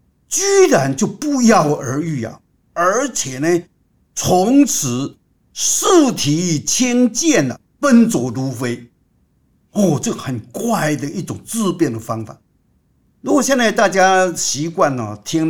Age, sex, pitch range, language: 50-69, male, 140-210 Hz, Chinese